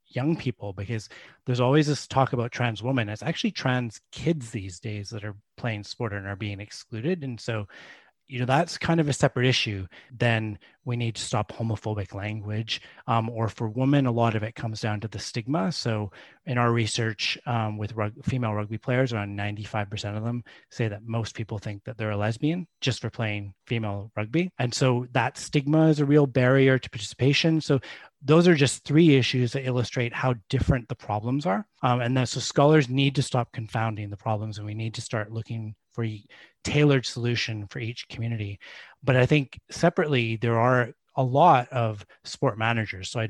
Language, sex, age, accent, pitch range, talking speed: English, male, 30-49, American, 110-130 Hz, 195 wpm